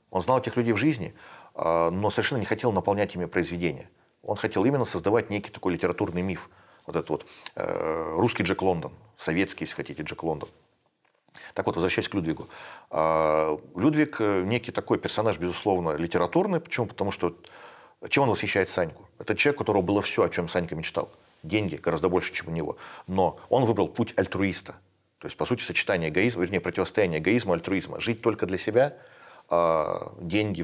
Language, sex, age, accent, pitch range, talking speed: Russian, male, 40-59, native, 90-120 Hz, 170 wpm